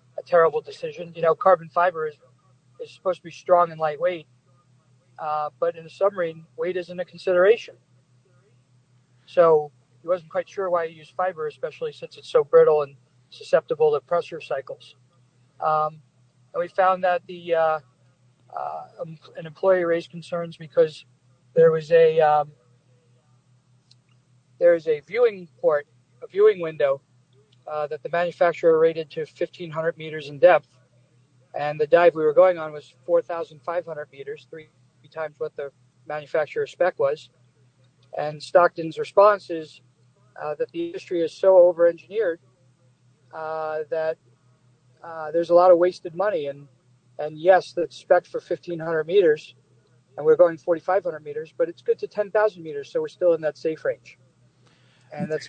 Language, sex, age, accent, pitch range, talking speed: English, male, 40-59, American, 130-185 Hz, 155 wpm